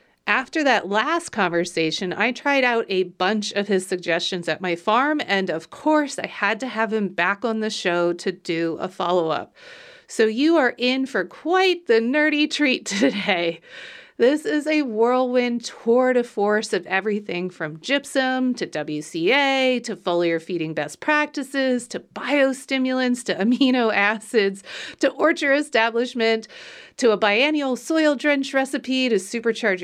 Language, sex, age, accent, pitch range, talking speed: English, female, 30-49, American, 180-255 Hz, 150 wpm